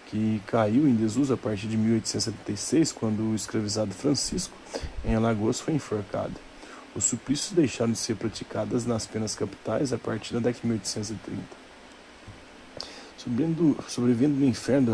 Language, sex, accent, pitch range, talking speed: Portuguese, male, Brazilian, 105-120 Hz, 145 wpm